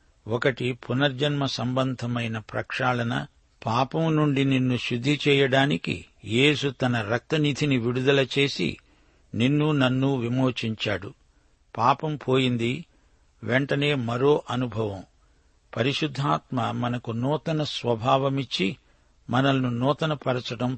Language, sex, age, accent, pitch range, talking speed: Telugu, male, 60-79, native, 115-140 Hz, 85 wpm